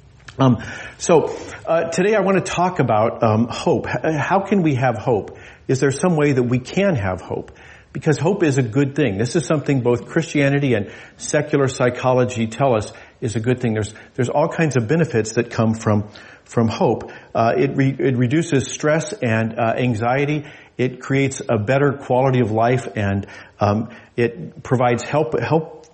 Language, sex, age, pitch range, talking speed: English, male, 50-69, 115-140 Hz, 175 wpm